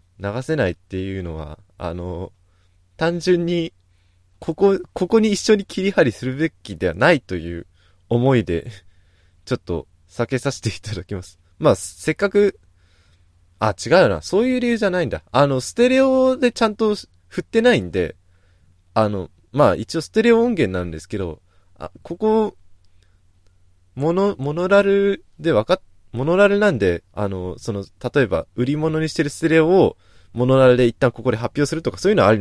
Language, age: Japanese, 20-39